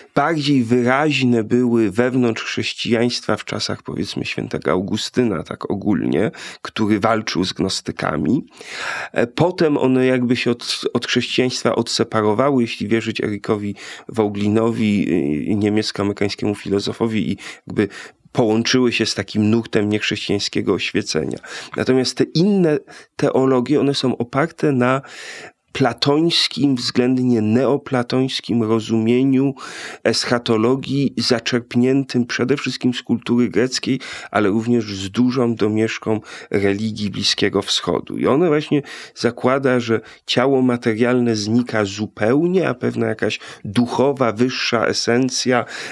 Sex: male